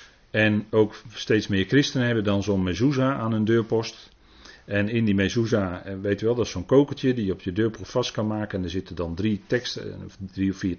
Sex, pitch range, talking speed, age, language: male, 105-140 Hz, 220 wpm, 40-59, Dutch